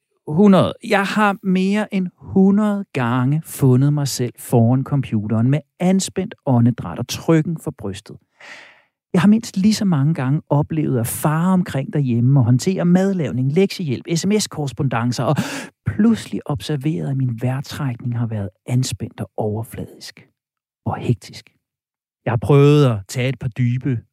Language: Danish